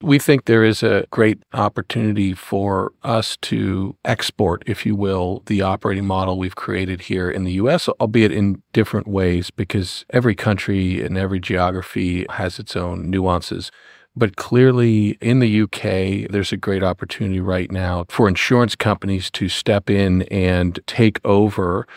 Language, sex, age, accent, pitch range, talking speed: English, male, 50-69, American, 90-110 Hz, 155 wpm